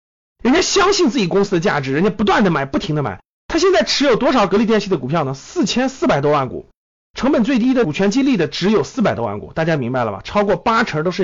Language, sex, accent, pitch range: Chinese, male, native, 160-255 Hz